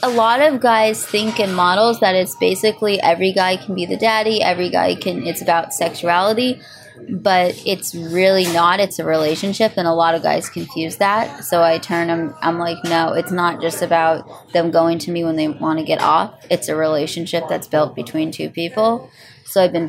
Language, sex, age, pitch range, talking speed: English, female, 20-39, 165-210 Hz, 210 wpm